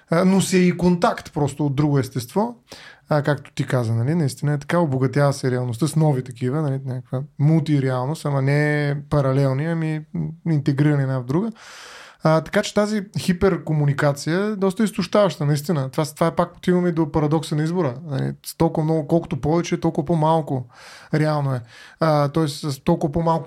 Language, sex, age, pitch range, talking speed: Bulgarian, male, 20-39, 145-180 Hz, 165 wpm